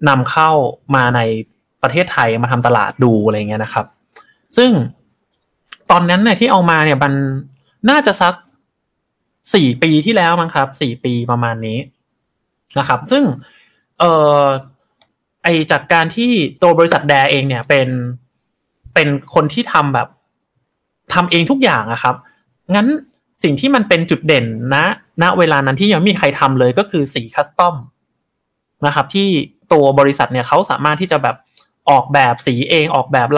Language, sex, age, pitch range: Thai, male, 20-39, 130-170 Hz